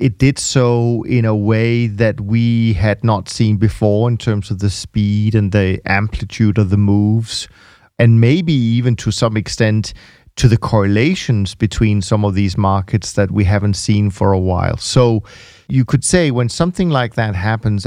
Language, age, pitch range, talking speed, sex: English, 40-59, 105-125 Hz, 180 wpm, male